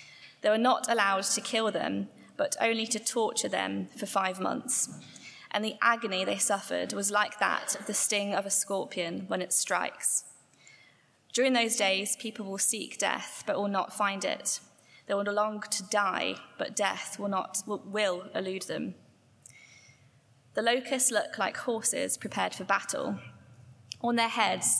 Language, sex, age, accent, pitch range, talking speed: English, female, 20-39, British, 195-225 Hz, 165 wpm